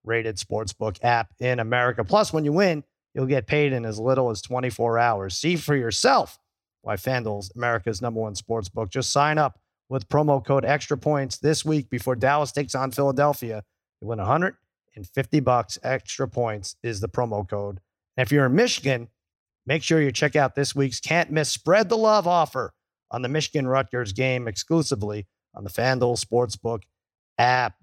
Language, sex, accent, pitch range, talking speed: English, male, American, 115-145 Hz, 175 wpm